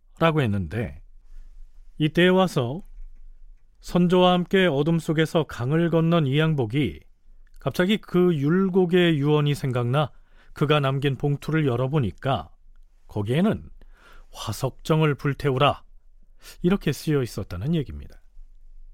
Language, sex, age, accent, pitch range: Korean, male, 40-59, native, 105-165 Hz